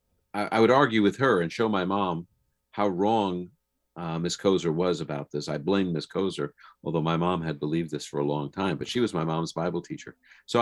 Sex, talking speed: male, 220 wpm